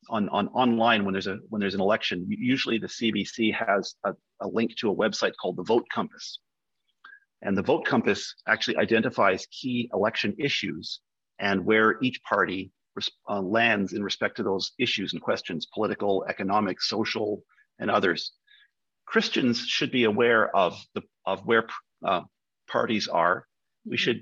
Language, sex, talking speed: English, male, 155 wpm